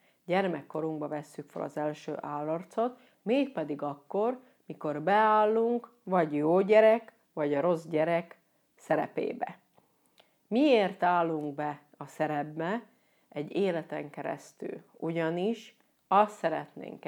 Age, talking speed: 40-59, 100 wpm